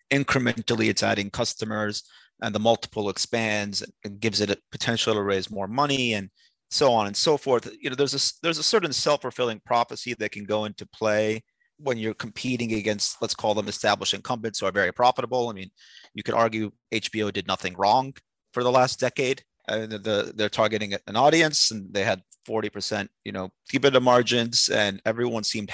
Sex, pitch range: male, 100-125 Hz